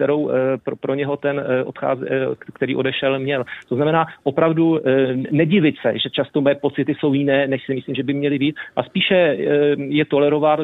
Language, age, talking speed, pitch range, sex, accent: Czech, 40-59, 170 wpm, 135-160 Hz, male, native